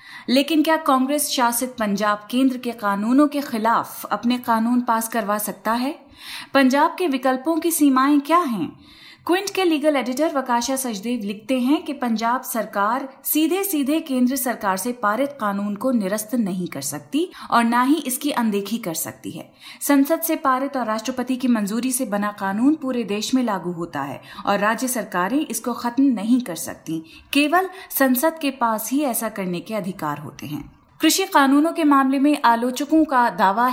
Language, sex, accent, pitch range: Hindi, female, native, 210-275 Hz